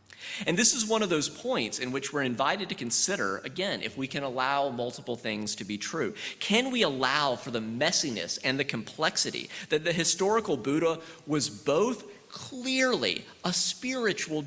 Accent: American